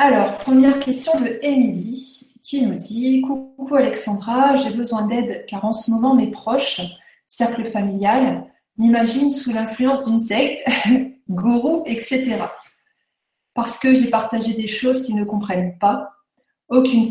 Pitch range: 210-255 Hz